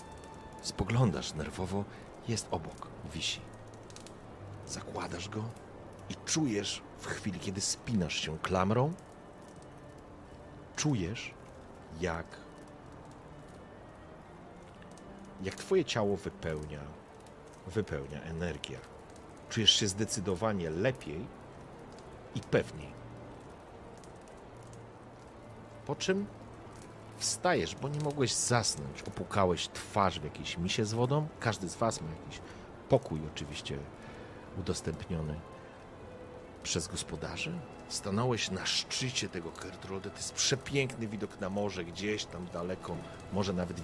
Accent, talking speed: native, 95 wpm